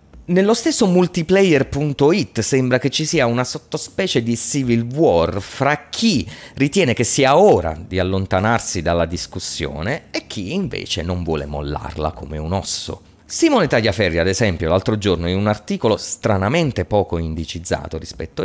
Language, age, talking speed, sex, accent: Italian, 30-49, 145 wpm, male, native